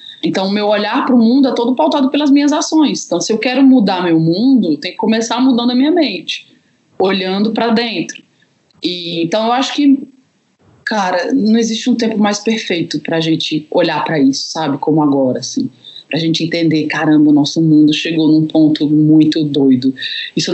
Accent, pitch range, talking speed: Brazilian, 160-240 Hz, 195 wpm